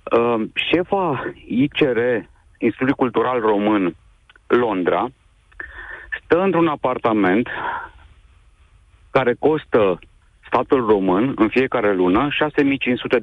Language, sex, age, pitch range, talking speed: Romanian, male, 40-59, 95-140 Hz, 80 wpm